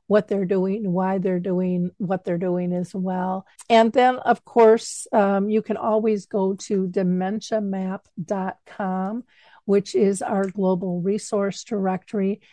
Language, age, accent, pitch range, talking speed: English, 50-69, American, 195-225 Hz, 135 wpm